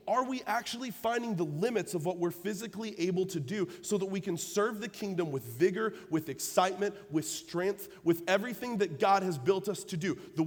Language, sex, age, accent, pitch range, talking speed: English, male, 30-49, American, 155-210 Hz, 205 wpm